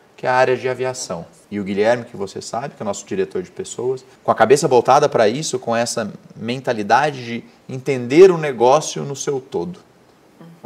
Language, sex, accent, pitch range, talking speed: Portuguese, male, Brazilian, 105-155 Hz, 205 wpm